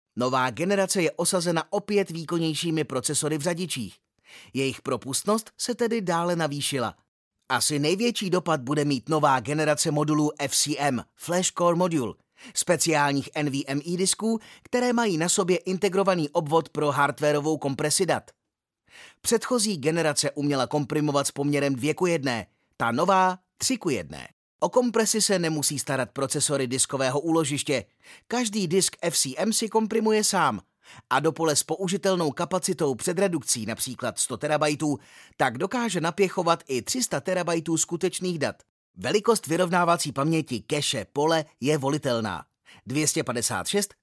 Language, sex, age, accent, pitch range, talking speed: Czech, male, 30-49, native, 140-185 Hz, 130 wpm